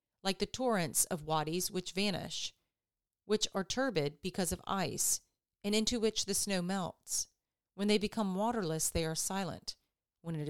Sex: female